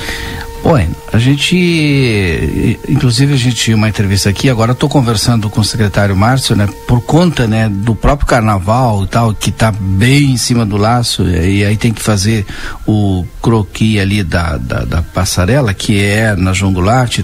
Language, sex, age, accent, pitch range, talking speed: Portuguese, male, 60-79, Brazilian, 105-140 Hz, 170 wpm